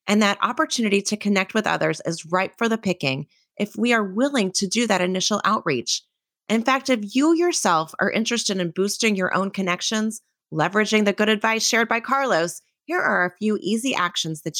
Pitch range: 175-230 Hz